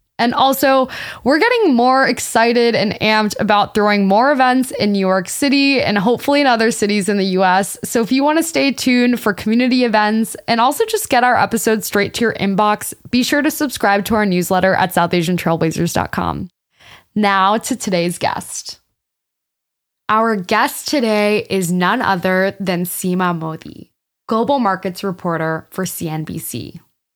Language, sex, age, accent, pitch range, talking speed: English, female, 20-39, American, 185-245 Hz, 155 wpm